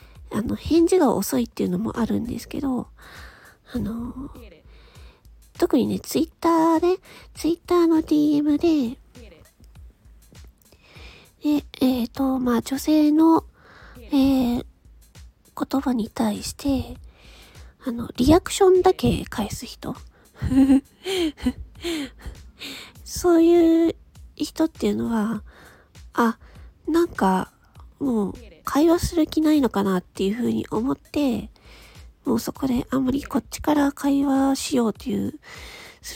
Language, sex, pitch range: Japanese, female, 235-315 Hz